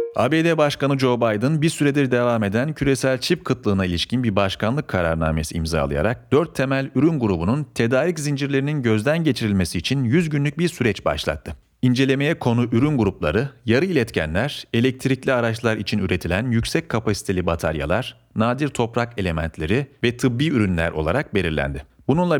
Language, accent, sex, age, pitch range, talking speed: Turkish, native, male, 40-59, 100-140 Hz, 140 wpm